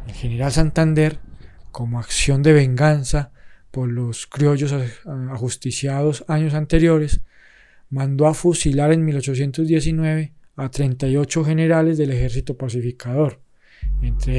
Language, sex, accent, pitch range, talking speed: Spanish, male, Colombian, 125-150 Hz, 105 wpm